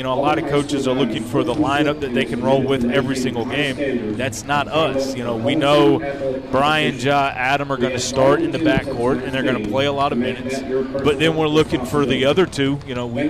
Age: 30-49